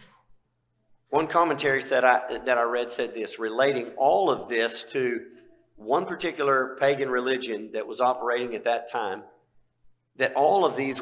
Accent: American